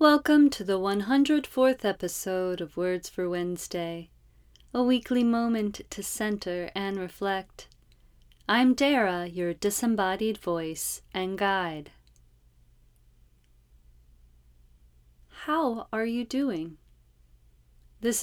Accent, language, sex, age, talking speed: American, English, female, 30-49, 90 wpm